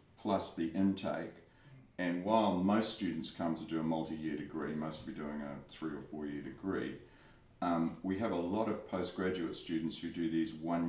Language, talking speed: English, 185 wpm